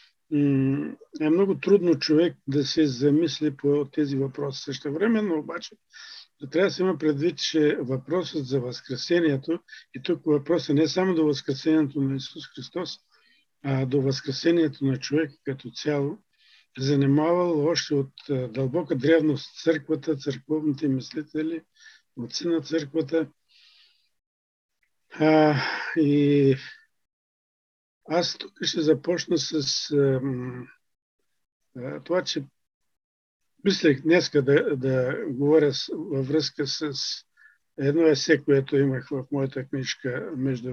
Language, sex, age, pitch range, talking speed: Bulgarian, male, 50-69, 135-165 Hz, 115 wpm